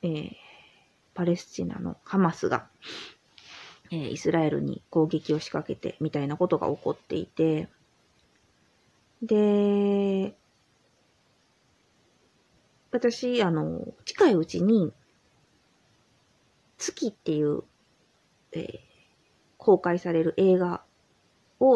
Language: Japanese